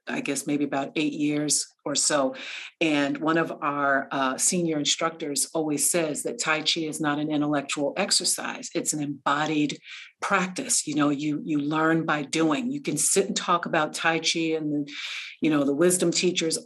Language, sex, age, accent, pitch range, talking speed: English, female, 50-69, American, 145-180 Hz, 180 wpm